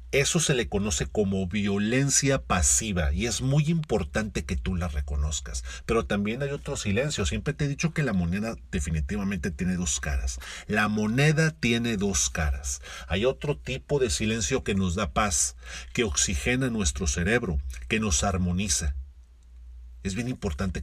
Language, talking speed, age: Spanish, 160 wpm, 40-59